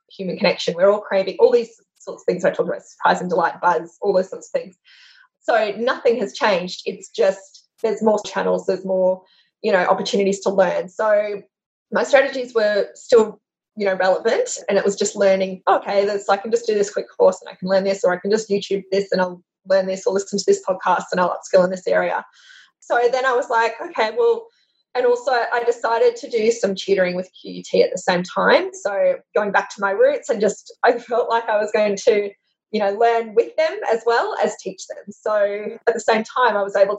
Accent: Australian